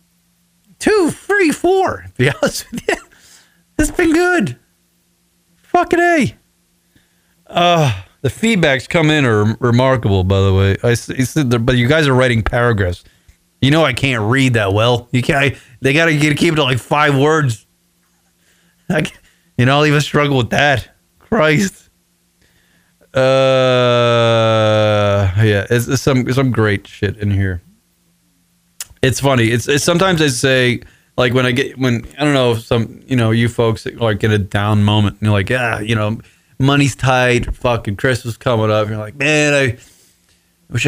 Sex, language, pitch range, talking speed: male, English, 100-135 Hz, 170 wpm